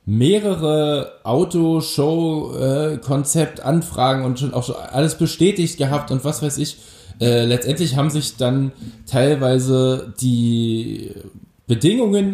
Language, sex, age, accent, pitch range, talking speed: German, male, 10-29, German, 105-140 Hz, 95 wpm